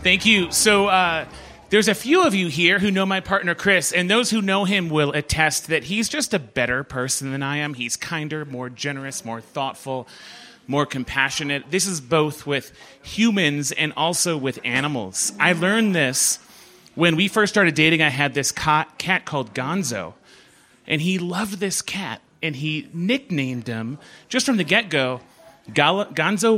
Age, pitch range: 30-49, 140-190 Hz